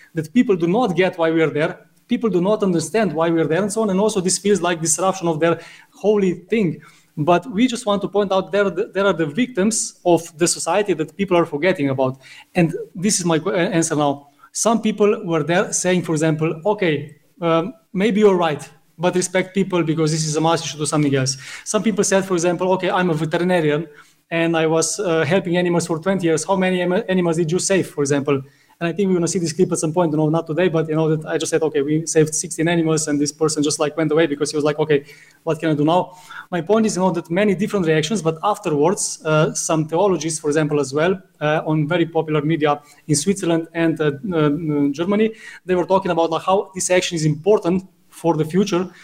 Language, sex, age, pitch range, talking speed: English, male, 20-39, 155-185 Hz, 240 wpm